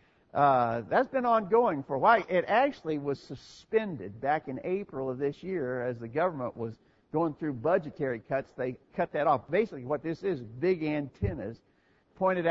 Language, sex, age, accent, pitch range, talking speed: English, male, 50-69, American, 125-170 Hz, 175 wpm